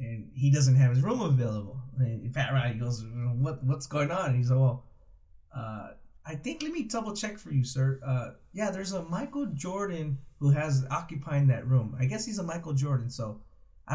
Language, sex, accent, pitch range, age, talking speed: English, male, American, 125-145 Hz, 20-39, 205 wpm